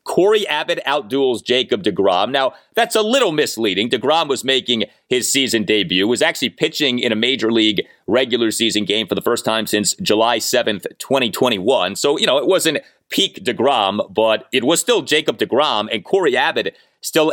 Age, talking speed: 30-49, 180 wpm